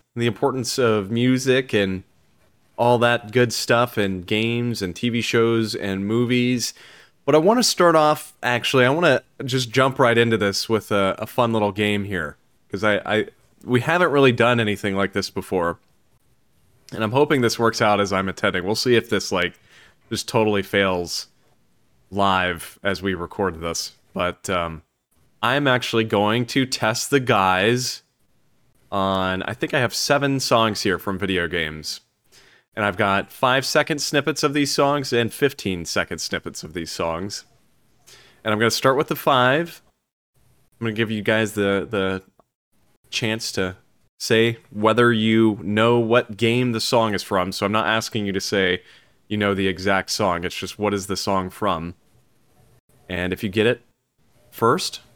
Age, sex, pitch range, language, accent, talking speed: 20-39, male, 100-125 Hz, English, American, 175 wpm